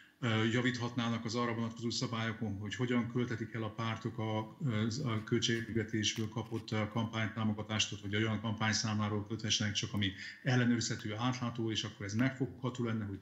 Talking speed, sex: 135 wpm, male